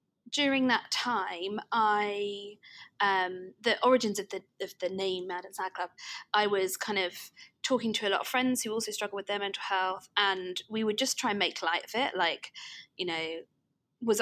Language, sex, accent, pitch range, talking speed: English, female, British, 180-220 Hz, 200 wpm